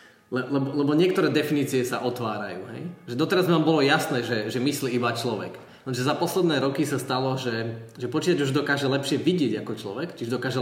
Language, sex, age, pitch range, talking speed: Slovak, male, 20-39, 120-145 Hz, 205 wpm